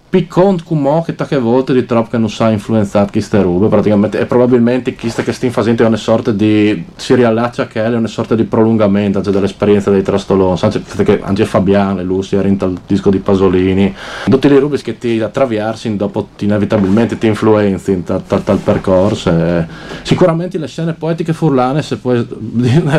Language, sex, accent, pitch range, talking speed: Italian, male, native, 100-130 Hz, 195 wpm